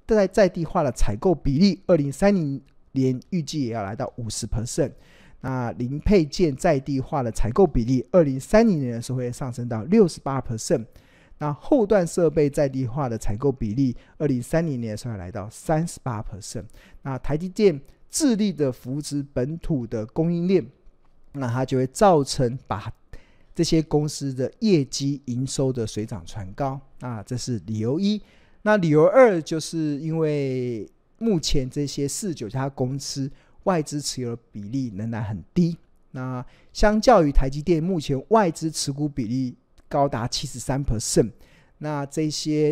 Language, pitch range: Chinese, 120-160 Hz